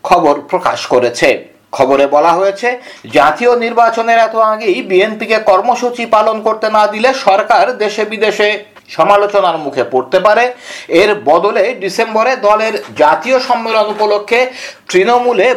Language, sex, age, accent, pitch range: Bengali, male, 60-79, native, 190-230 Hz